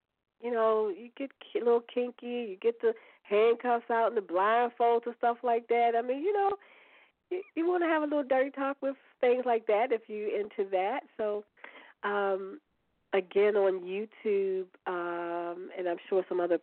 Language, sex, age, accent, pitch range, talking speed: English, female, 40-59, American, 180-280 Hz, 180 wpm